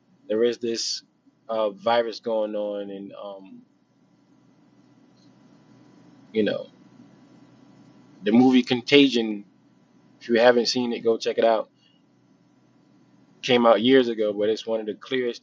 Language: English